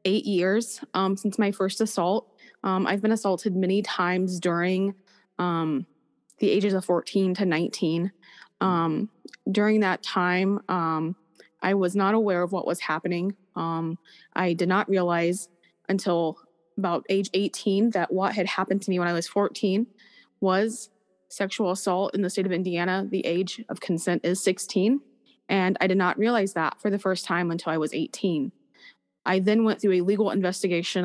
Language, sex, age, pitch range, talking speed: English, female, 20-39, 175-200 Hz, 170 wpm